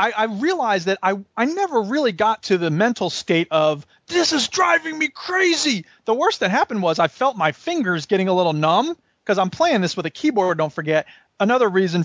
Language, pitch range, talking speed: English, 180-240 Hz, 210 wpm